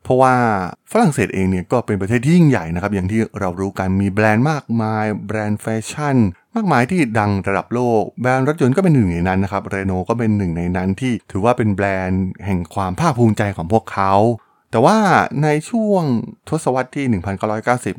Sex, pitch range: male, 95-125 Hz